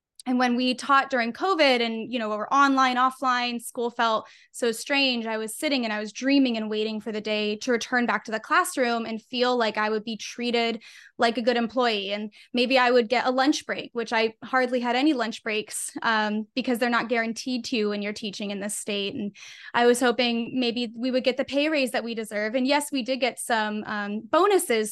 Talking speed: 230 wpm